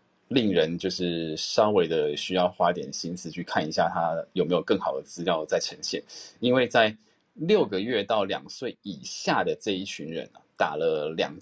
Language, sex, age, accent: Chinese, male, 20-39, native